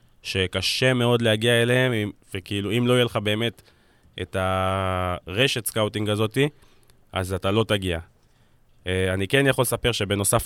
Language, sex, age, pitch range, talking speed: Hebrew, male, 20-39, 95-120 Hz, 130 wpm